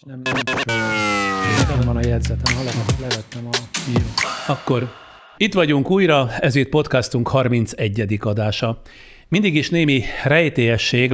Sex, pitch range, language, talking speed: male, 110-130 Hz, Hungarian, 80 wpm